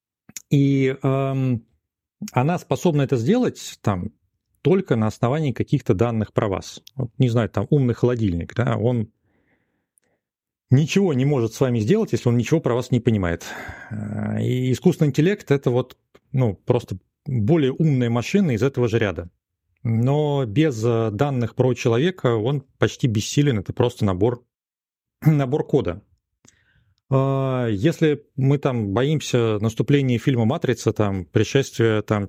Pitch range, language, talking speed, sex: 110-135 Hz, Russian, 135 wpm, male